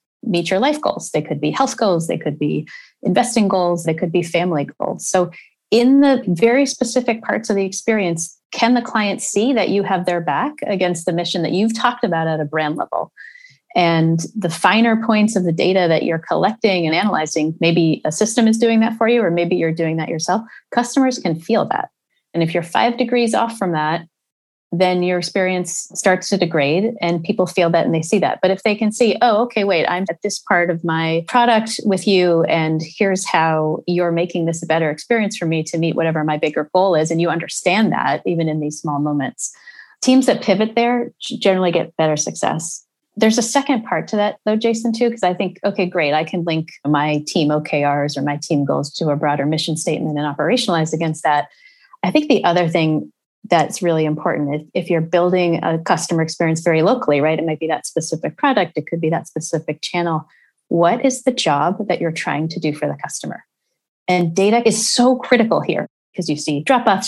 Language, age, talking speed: English, 30-49, 210 wpm